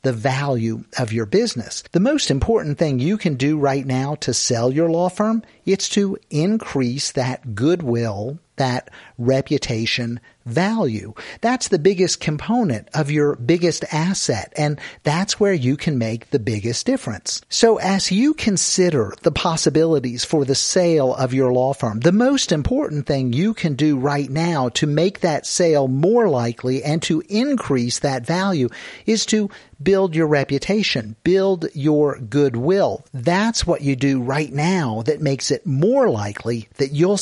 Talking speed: 160 wpm